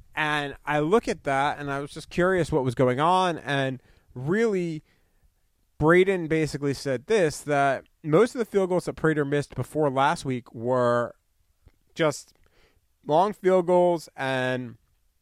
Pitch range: 125-160 Hz